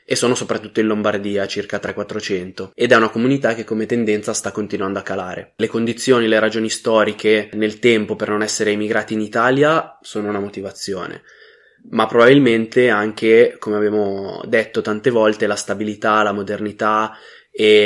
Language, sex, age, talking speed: Italian, male, 20-39, 160 wpm